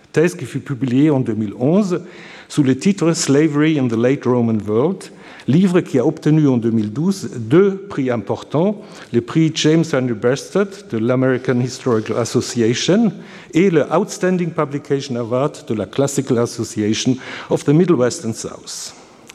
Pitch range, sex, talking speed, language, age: 125-170 Hz, male, 160 wpm, French, 60-79